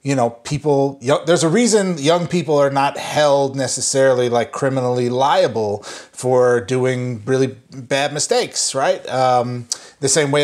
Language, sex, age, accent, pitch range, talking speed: English, male, 30-49, American, 130-160 Hz, 145 wpm